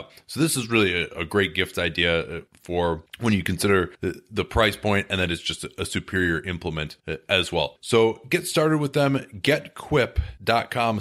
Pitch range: 90-120 Hz